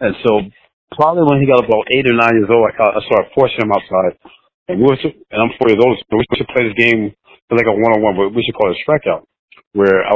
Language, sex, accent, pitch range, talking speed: English, male, American, 100-125 Hz, 280 wpm